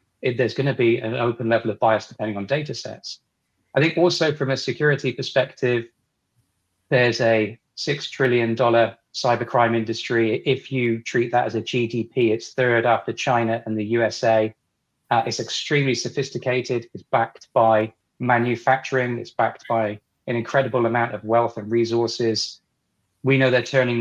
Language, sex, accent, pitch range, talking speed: English, male, British, 110-130 Hz, 155 wpm